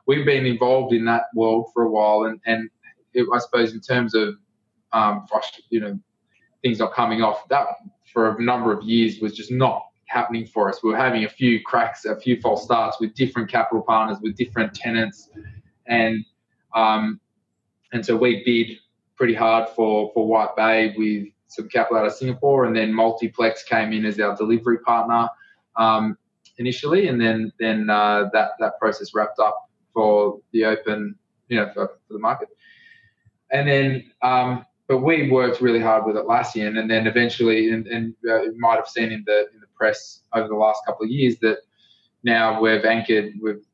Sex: male